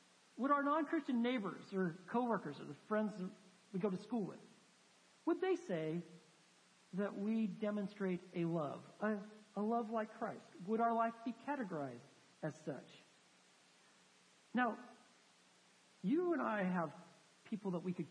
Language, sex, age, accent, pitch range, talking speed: English, male, 50-69, American, 160-230 Hz, 145 wpm